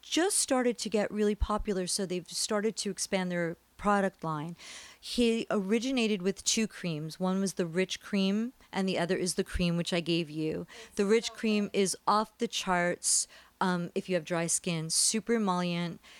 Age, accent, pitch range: 40-59, American, 175-210 Hz